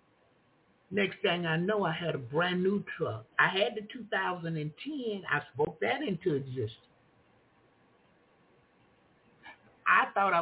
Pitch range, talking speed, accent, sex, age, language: 130-185 Hz, 120 wpm, American, male, 60-79, English